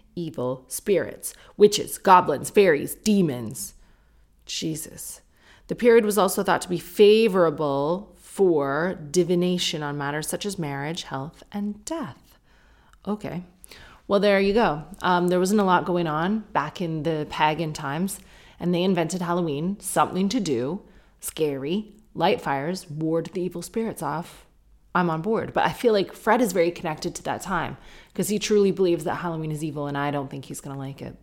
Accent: American